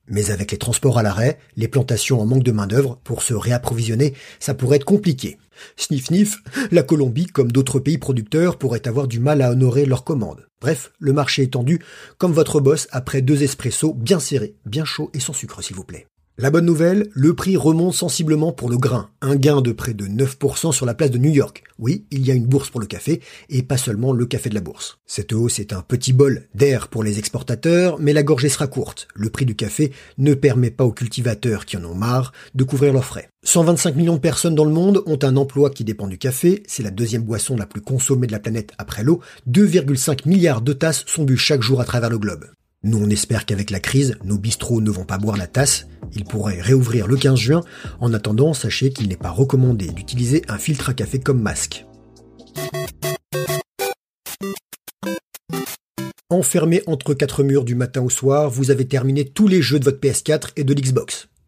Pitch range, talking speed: 115-145 Hz, 215 wpm